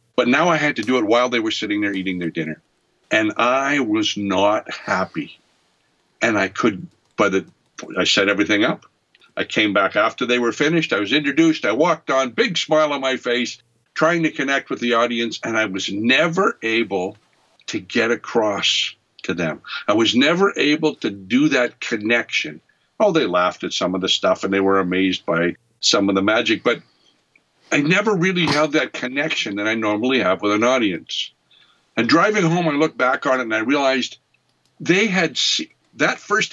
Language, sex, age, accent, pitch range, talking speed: English, male, 60-79, American, 95-150 Hz, 195 wpm